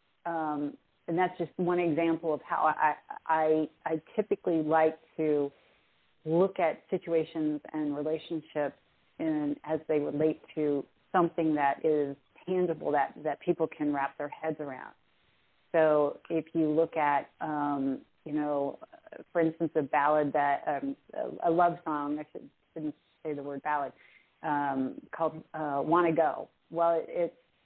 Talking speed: 150 wpm